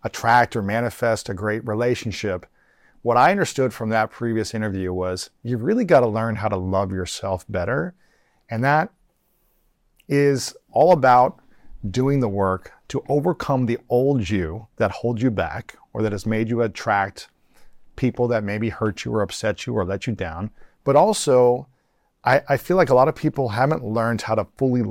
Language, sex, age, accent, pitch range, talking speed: English, male, 40-59, American, 100-130 Hz, 180 wpm